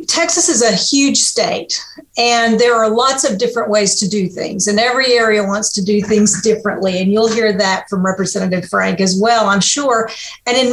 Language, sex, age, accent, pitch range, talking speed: English, female, 50-69, American, 205-250 Hz, 200 wpm